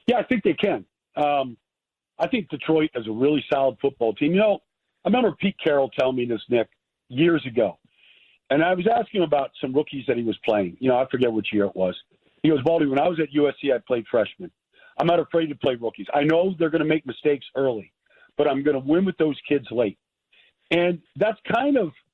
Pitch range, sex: 135-175 Hz, male